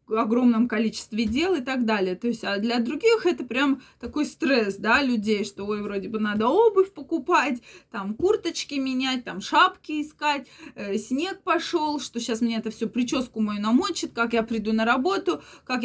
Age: 20-39